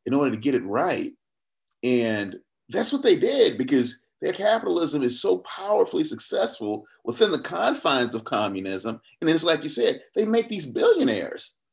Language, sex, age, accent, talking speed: English, male, 30-49, American, 165 wpm